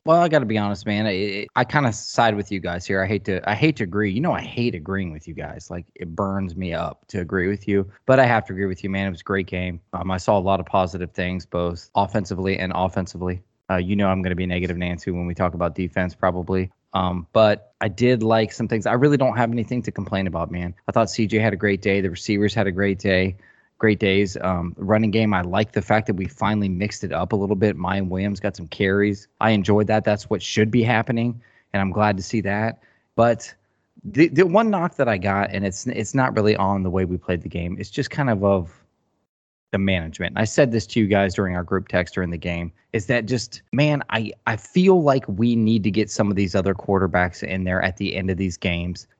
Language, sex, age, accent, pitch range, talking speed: English, male, 20-39, American, 95-110 Hz, 260 wpm